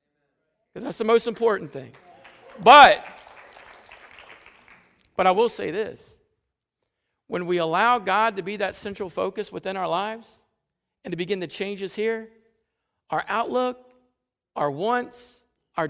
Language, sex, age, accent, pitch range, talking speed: English, male, 50-69, American, 180-250 Hz, 130 wpm